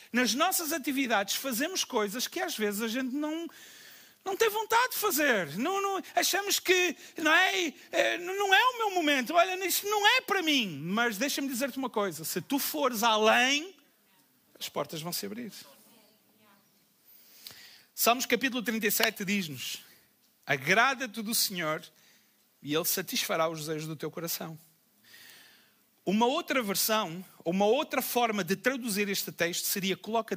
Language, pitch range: Portuguese, 205-280 Hz